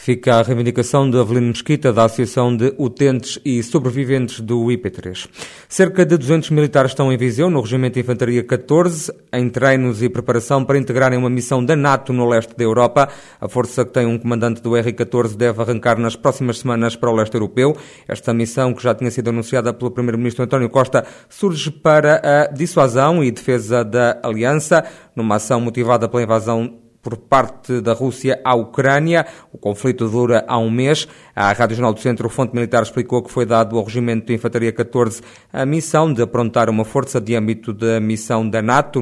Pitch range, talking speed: 115-135 Hz, 190 wpm